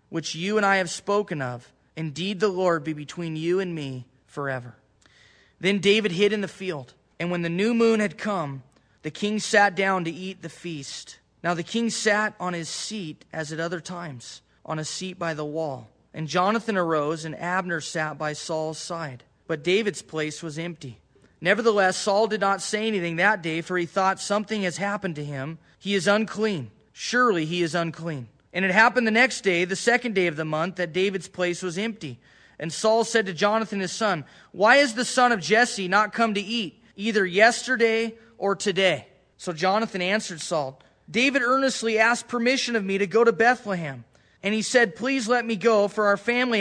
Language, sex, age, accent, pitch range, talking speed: English, male, 20-39, American, 165-220 Hz, 195 wpm